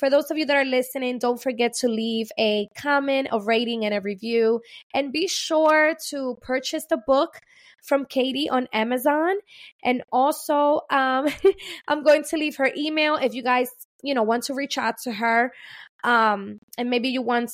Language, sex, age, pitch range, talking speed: English, female, 20-39, 230-295 Hz, 185 wpm